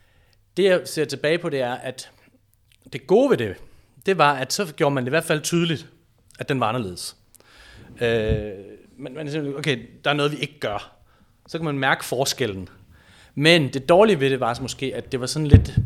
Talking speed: 210 wpm